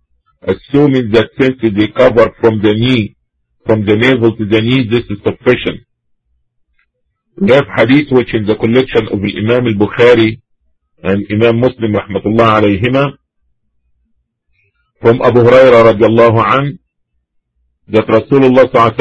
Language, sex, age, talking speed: English, male, 50-69, 125 wpm